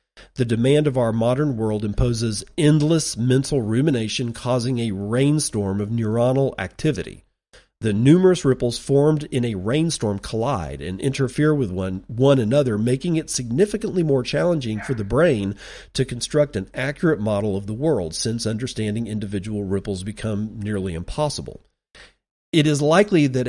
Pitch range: 105-145 Hz